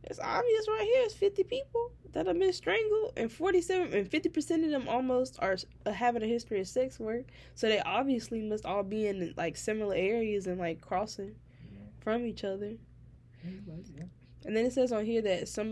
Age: 10-29